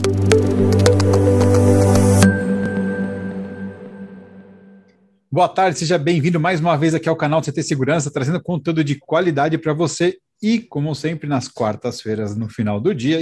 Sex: male